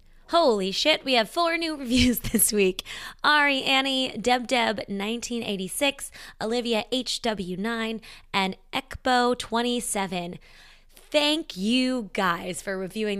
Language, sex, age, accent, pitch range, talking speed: English, female, 20-39, American, 190-240 Hz, 110 wpm